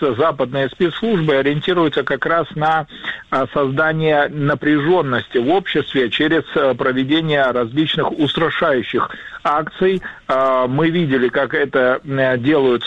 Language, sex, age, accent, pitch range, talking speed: Russian, male, 50-69, native, 130-160 Hz, 95 wpm